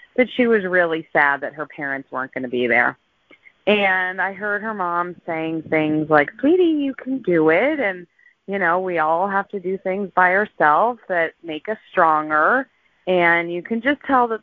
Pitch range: 165-235 Hz